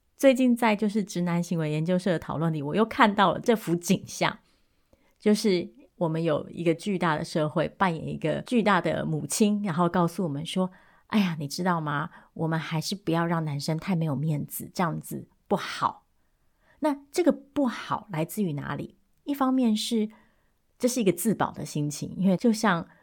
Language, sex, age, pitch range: Chinese, female, 30-49, 155-205 Hz